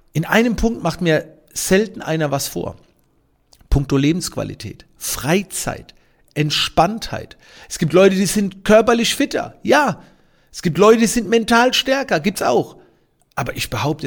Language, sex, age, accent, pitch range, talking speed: German, male, 50-69, German, 130-190 Hz, 140 wpm